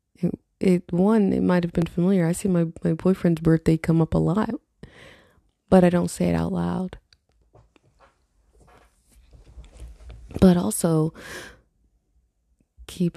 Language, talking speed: English, 125 wpm